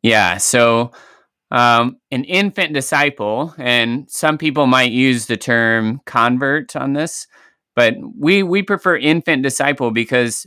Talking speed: 130 wpm